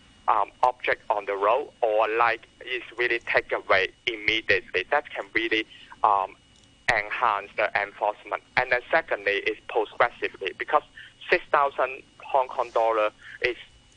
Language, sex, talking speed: English, male, 135 wpm